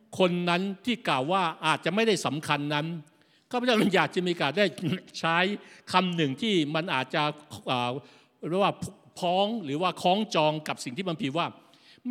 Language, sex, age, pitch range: Thai, male, 60-79, 175-225 Hz